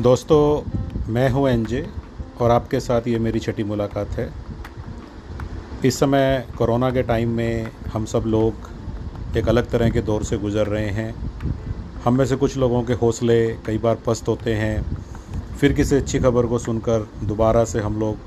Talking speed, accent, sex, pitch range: 170 wpm, native, male, 105-125 Hz